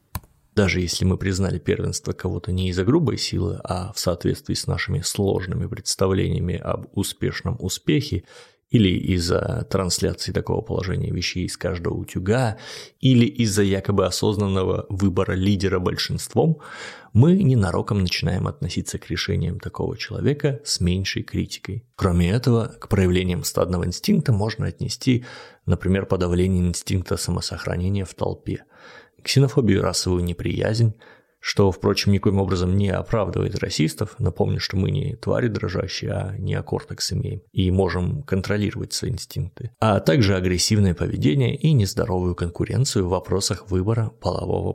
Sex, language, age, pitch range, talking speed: male, Russian, 30-49, 90-115 Hz, 130 wpm